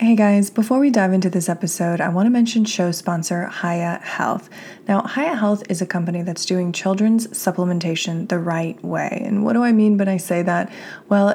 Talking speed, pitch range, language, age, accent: 205 wpm, 165-200 Hz, English, 20-39, American